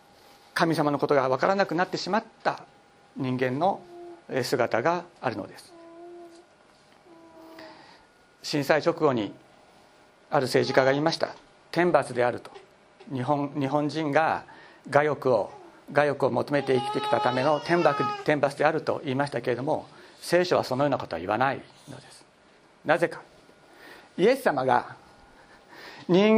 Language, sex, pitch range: Japanese, male, 150-230 Hz